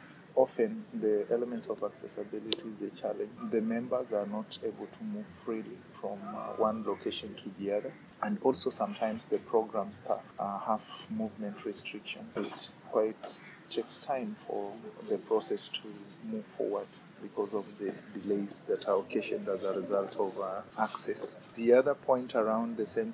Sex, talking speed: male, 155 wpm